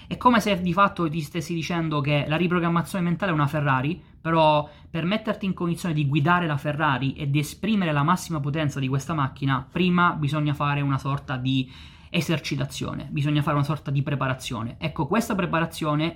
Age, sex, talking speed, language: 20-39, male, 180 wpm, Italian